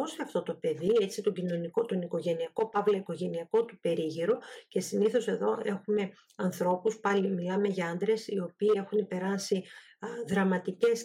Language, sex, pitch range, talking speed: Greek, female, 180-210 Hz, 145 wpm